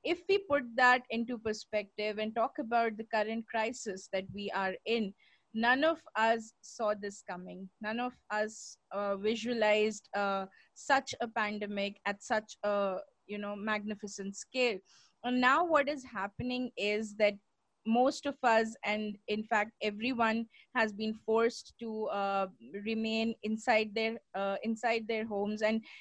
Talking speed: 150 wpm